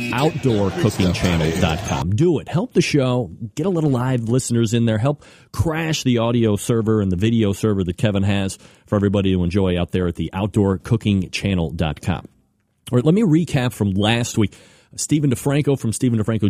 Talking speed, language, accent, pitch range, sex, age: 170 wpm, English, American, 100-125 Hz, male, 30-49